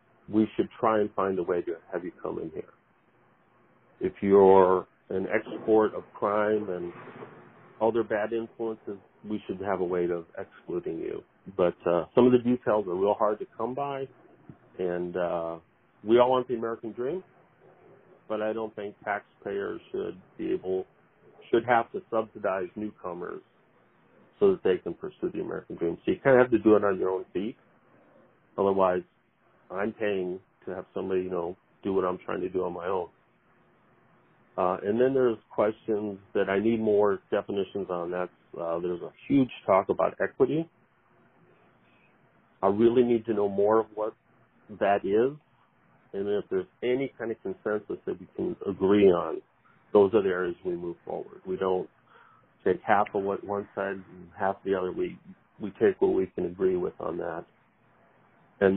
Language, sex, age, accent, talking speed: English, male, 40-59, American, 175 wpm